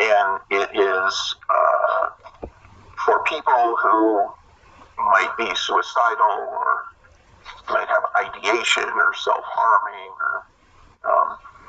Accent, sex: American, male